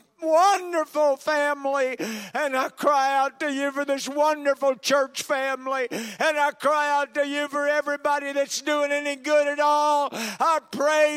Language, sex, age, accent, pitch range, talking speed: English, male, 60-79, American, 255-300 Hz, 155 wpm